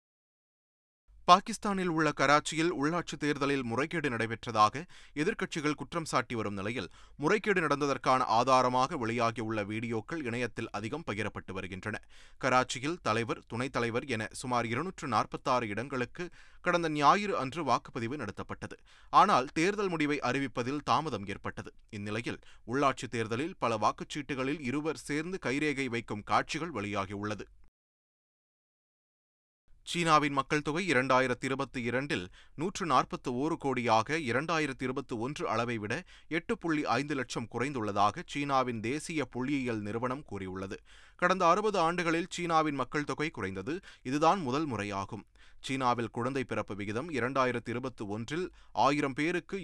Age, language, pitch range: 30-49, Tamil, 110-155 Hz